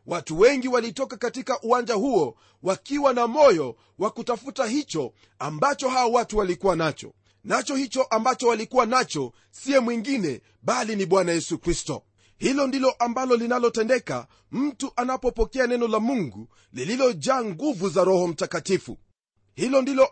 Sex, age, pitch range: male, 40-59, 175-255 Hz